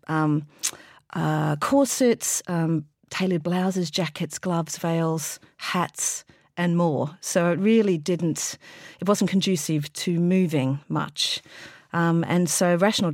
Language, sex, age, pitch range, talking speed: English, female, 40-59, 155-185 Hz, 120 wpm